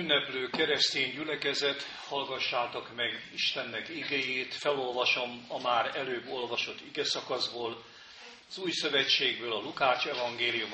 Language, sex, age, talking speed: Hungarian, male, 50-69, 105 wpm